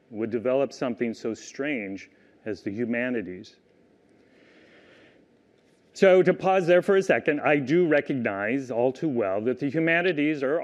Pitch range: 125-155 Hz